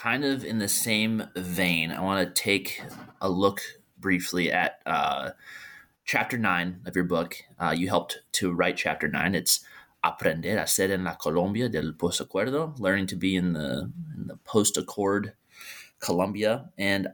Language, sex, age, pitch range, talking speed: English, male, 20-39, 90-115 Hz, 160 wpm